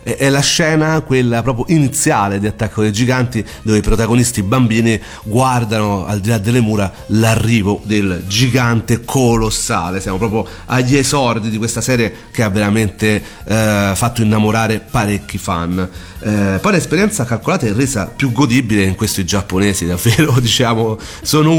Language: Italian